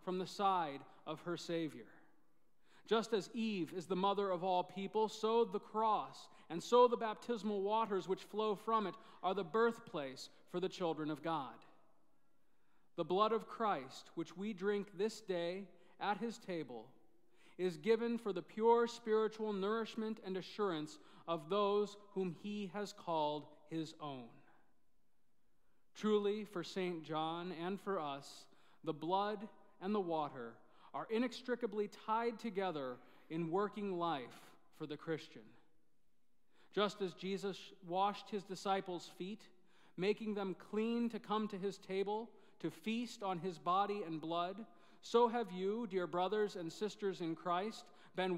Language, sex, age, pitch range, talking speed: English, male, 40-59, 175-215 Hz, 145 wpm